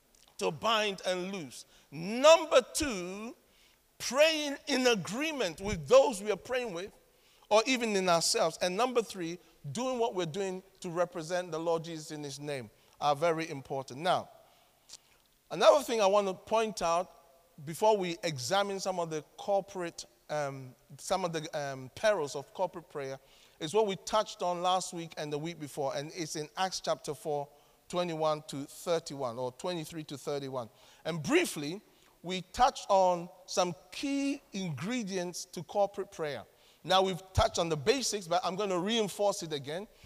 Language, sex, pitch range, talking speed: English, male, 160-210 Hz, 165 wpm